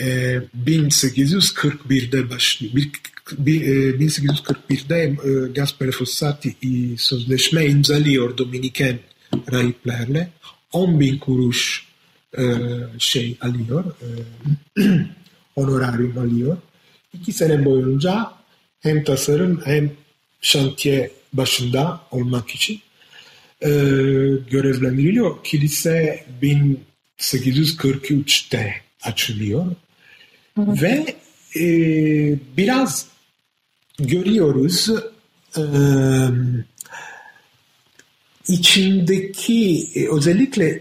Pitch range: 135-175 Hz